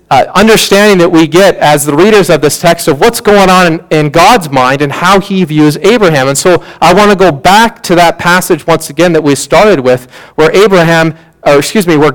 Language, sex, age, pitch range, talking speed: English, male, 40-59, 155-205 Hz, 225 wpm